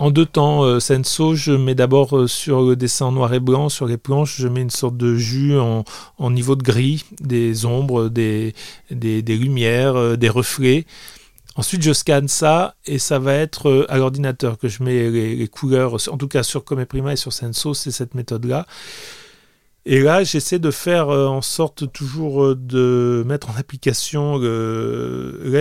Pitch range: 125-150 Hz